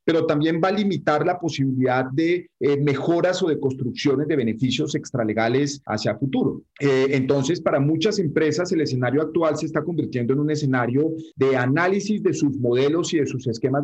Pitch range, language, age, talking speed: 125-155 Hz, Spanish, 30-49, 180 wpm